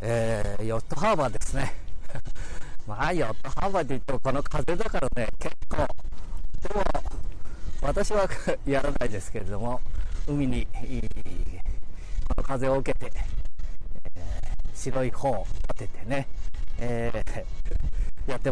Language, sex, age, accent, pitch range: Japanese, male, 40-59, native, 90-130 Hz